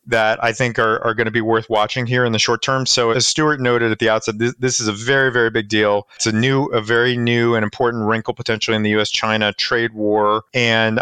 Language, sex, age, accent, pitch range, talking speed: English, male, 30-49, American, 110-130 Hz, 245 wpm